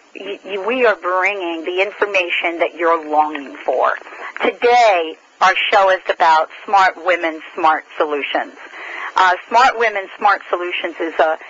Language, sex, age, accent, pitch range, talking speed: English, female, 40-59, American, 170-225 Hz, 130 wpm